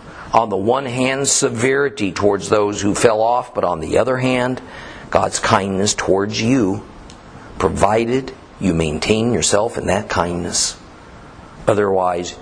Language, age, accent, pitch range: English, 50-69, American, 105-145 Hz